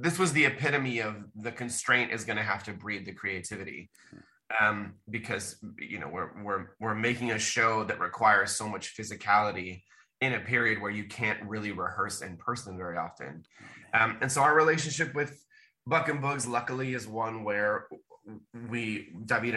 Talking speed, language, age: 175 wpm, English, 20-39